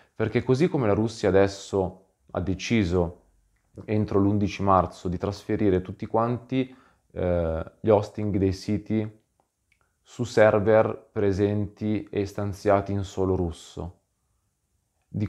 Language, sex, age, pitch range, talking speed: Italian, male, 20-39, 90-105 Hz, 115 wpm